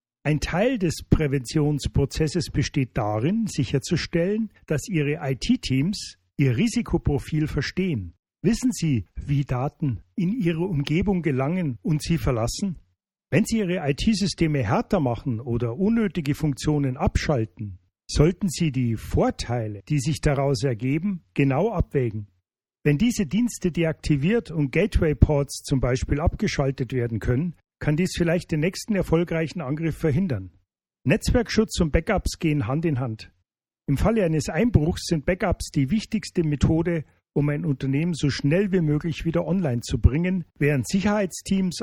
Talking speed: 130 wpm